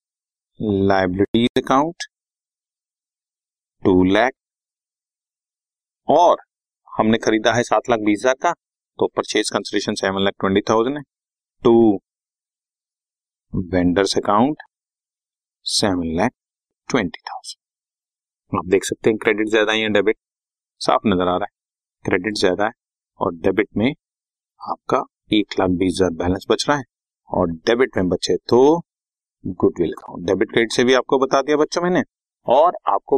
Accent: native